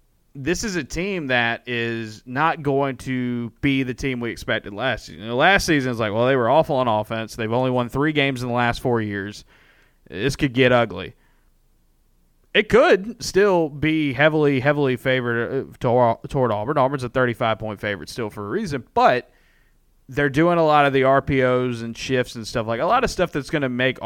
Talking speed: 205 wpm